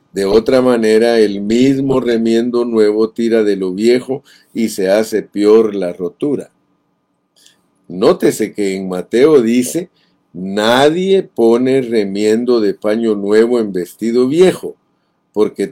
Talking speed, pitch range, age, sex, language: 120 wpm, 105-130 Hz, 50-69, male, Spanish